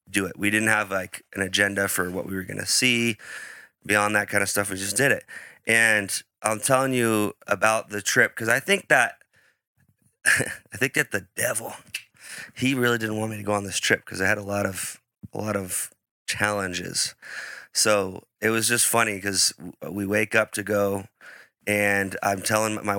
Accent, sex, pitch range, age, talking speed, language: American, male, 95-105 Hz, 20-39, 195 wpm, English